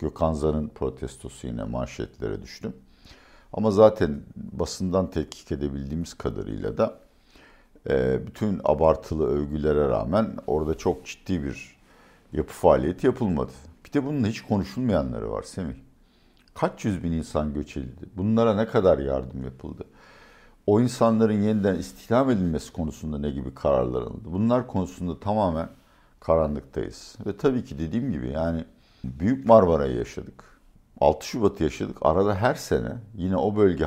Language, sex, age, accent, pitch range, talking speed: Turkish, male, 60-79, native, 75-100 Hz, 130 wpm